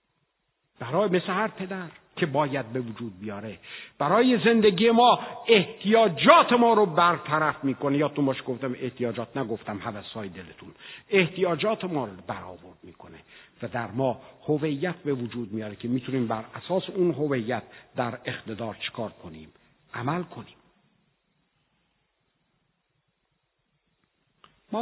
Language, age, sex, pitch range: Persian, 60-79, male, 130-190 Hz